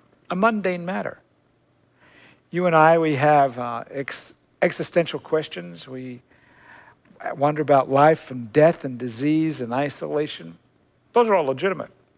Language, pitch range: English, 130-175 Hz